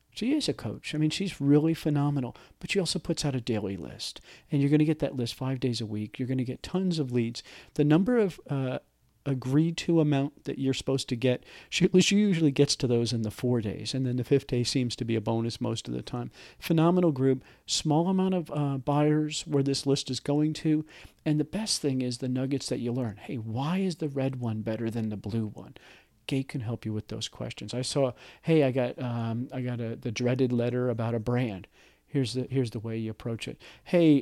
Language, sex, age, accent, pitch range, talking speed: English, male, 40-59, American, 120-150 Hz, 240 wpm